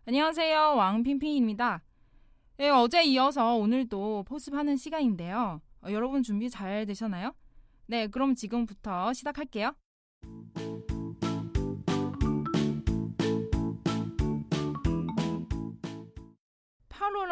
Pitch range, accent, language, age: 185-285 Hz, native, Korean, 20-39